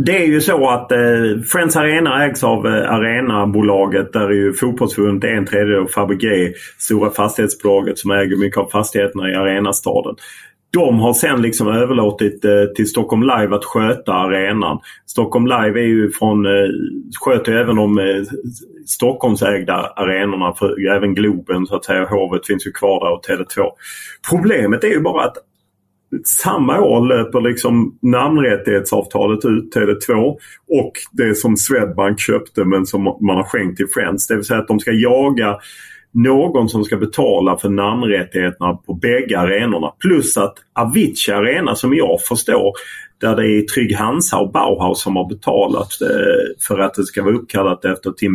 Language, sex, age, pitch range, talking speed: Swedish, male, 30-49, 100-120 Hz, 165 wpm